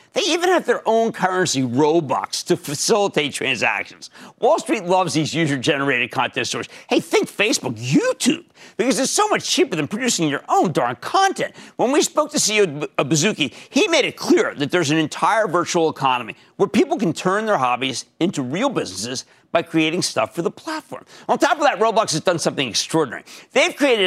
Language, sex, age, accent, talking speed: English, male, 50-69, American, 185 wpm